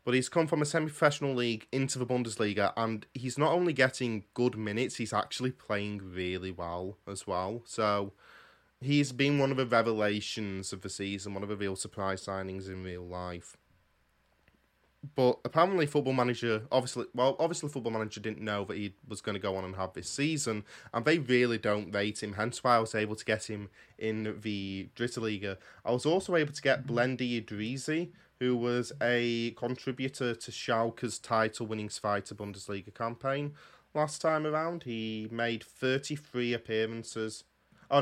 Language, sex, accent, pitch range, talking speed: English, male, British, 105-130 Hz, 170 wpm